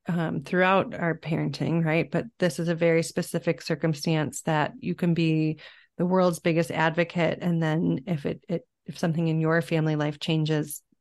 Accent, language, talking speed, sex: American, English, 175 wpm, female